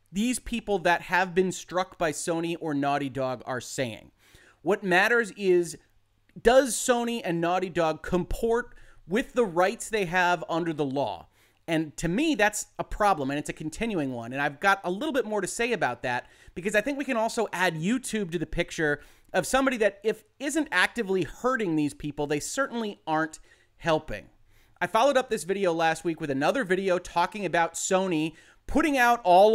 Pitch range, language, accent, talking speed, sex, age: 150-210 Hz, English, American, 185 wpm, male, 30-49